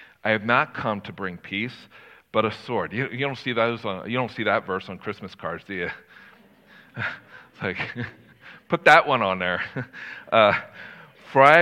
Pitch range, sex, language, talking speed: 105-130 Hz, male, English, 185 wpm